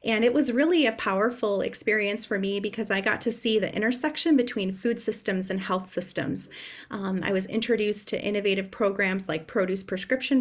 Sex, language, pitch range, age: female, English, 195-230 Hz, 30-49